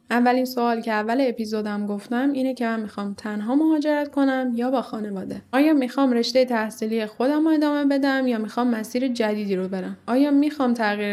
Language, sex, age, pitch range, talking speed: Persian, female, 10-29, 205-250 Hz, 175 wpm